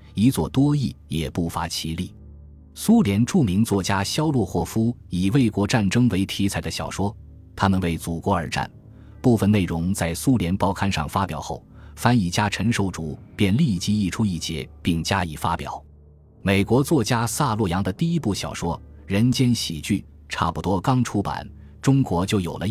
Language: Chinese